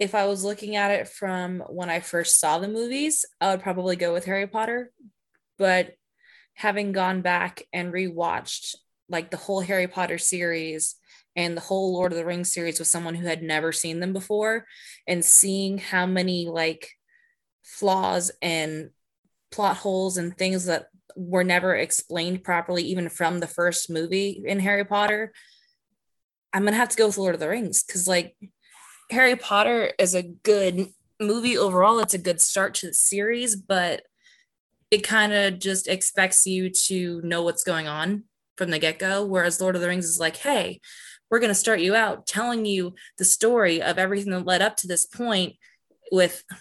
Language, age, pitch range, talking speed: English, 20-39, 175-205 Hz, 180 wpm